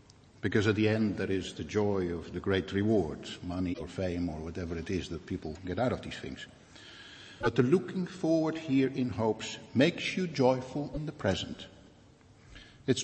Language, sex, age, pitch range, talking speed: English, male, 60-79, 105-145 Hz, 185 wpm